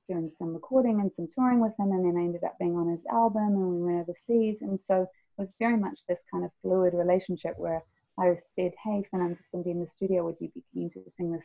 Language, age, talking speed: English, 30-49, 275 wpm